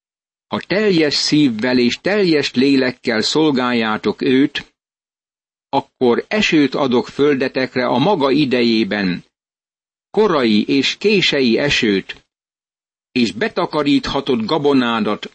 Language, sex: Hungarian, male